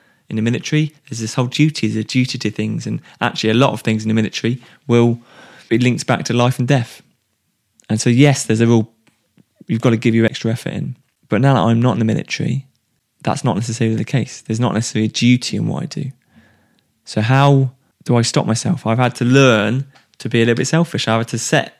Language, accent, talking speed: English, British, 235 wpm